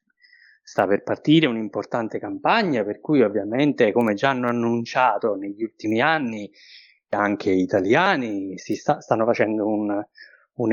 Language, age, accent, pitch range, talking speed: Italian, 30-49, native, 110-160 Hz, 135 wpm